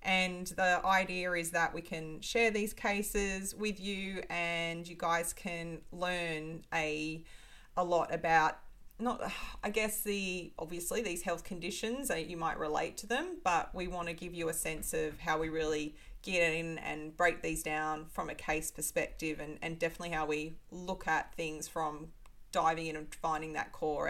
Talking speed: 175 wpm